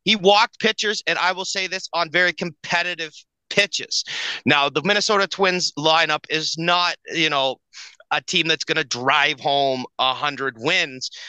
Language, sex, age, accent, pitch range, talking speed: English, male, 30-49, American, 145-185 Hz, 165 wpm